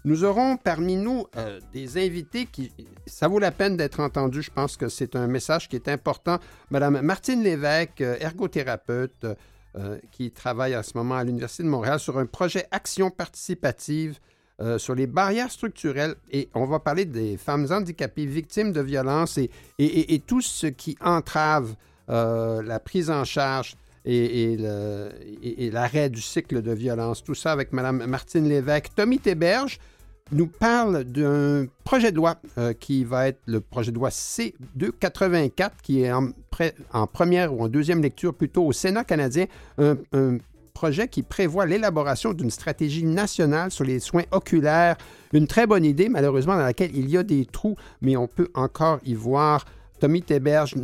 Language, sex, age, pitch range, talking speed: French, male, 60-79, 130-175 Hz, 180 wpm